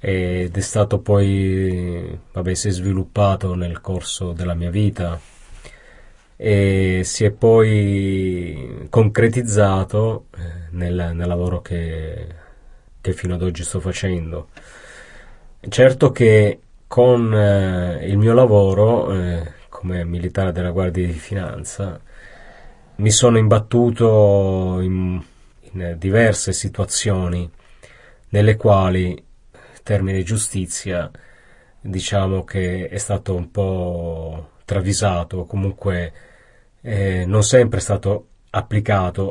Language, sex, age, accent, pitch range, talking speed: Italian, male, 30-49, native, 90-105 Hz, 100 wpm